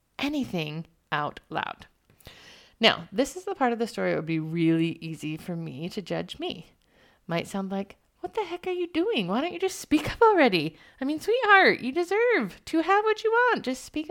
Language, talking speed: English, 215 wpm